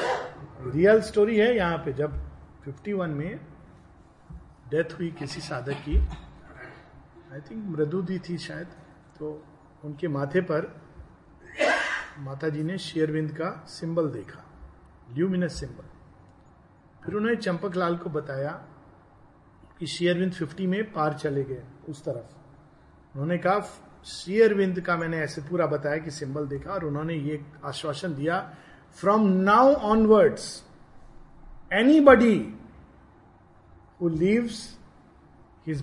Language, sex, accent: Hindi, male, native